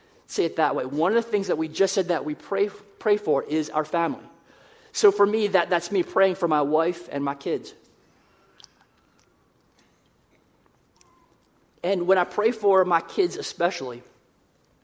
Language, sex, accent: English, male, American